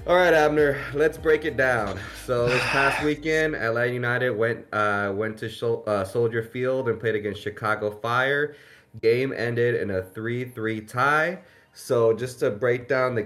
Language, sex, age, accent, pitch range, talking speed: English, male, 20-39, American, 100-120 Hz, 170 wpm